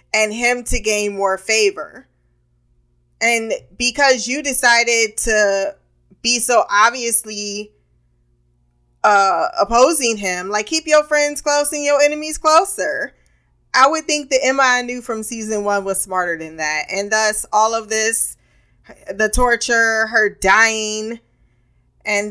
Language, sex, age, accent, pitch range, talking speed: English, female, 20-39, American, 195-245 Hz, 135 wpm